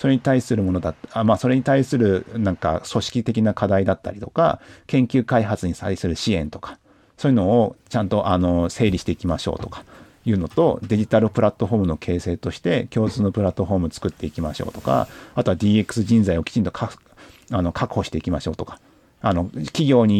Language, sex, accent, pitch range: Japanese, male, native, 95-120 Hz